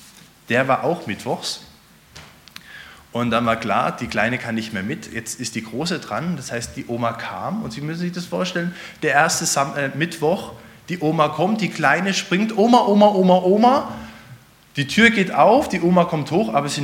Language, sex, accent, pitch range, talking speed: German, male, German, 145-200 Hz, 190 wpm